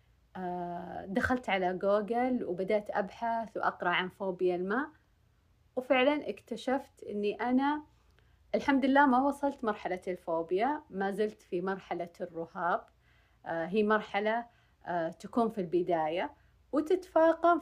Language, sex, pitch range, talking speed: Arabic, female, 185-260 Hz, 100 wpm